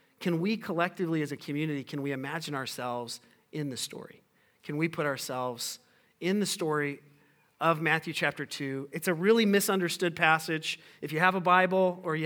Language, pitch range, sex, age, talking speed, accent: English, 160-190 Hz, male, 40-59, 175 wpm, American